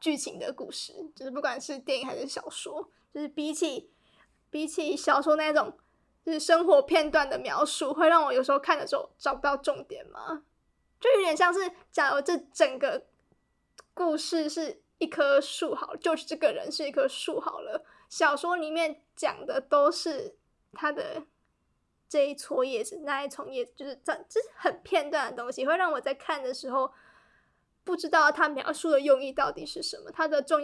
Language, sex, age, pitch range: Chinese, female, 20-39, 290-355 Hz